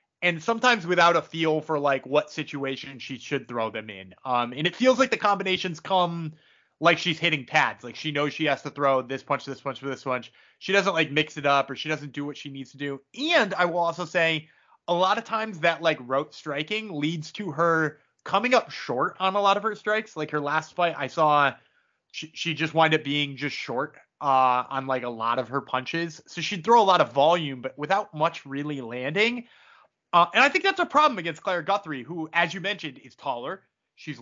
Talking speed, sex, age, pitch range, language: 230 wpm, male, 30-49, 145-200 Hz, English